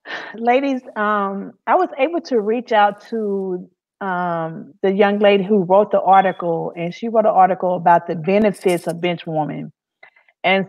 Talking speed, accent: 165 wpm, American